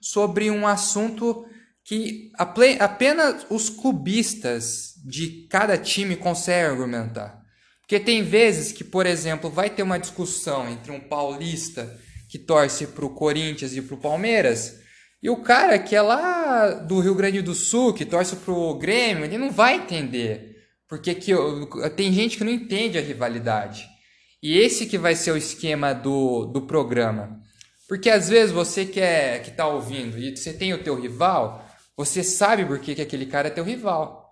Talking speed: 170 wpm